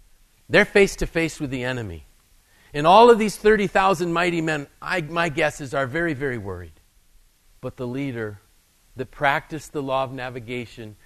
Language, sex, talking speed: English, male, 145 wpm